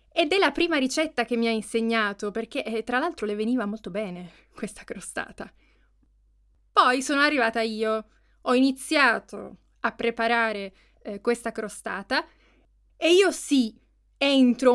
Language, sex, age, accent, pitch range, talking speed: Italian, female, 20-39, native, 205-265 Hz, 140 wpm